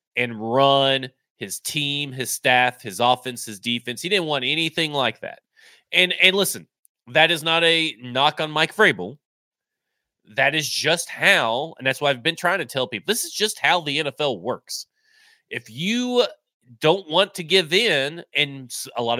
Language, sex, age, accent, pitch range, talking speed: English, male, 30-49, American, 120-165 Hz, 180 wpm